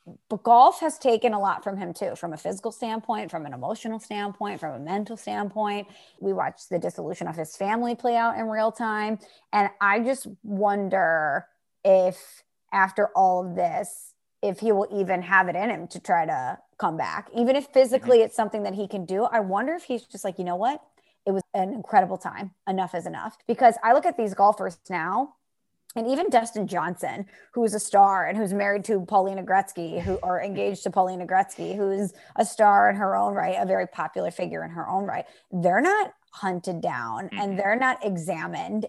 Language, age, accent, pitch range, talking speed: English, 30-49, American, 190-225 Hz, 200 wpm